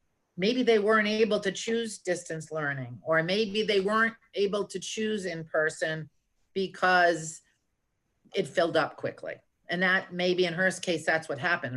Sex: female